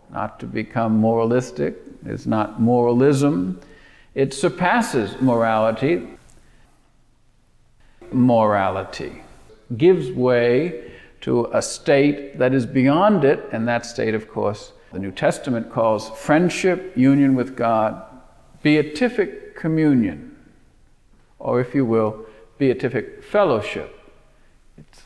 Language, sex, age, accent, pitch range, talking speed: English, male, 50-69, American, 115-145 Hz, 100 wpm